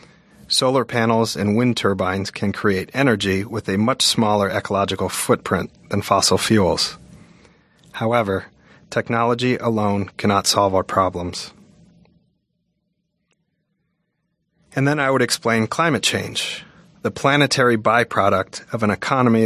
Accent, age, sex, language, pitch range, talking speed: American, 30-49, male, English, 100-125 Hz, 115 wpm